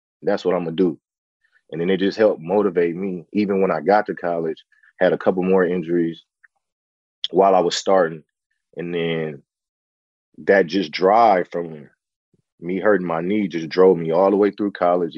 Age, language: 20-39, English